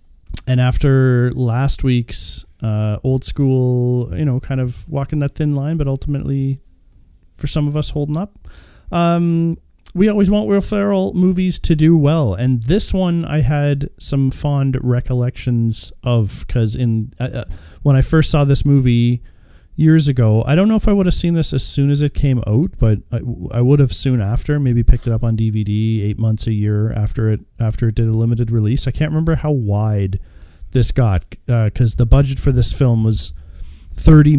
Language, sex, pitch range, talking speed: English, male, 110-145 Hz, 190 wpm